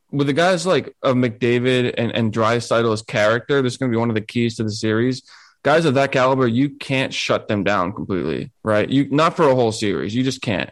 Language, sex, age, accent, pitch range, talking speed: English, male, 20-39, American, 110-130 Hz, 240 wpm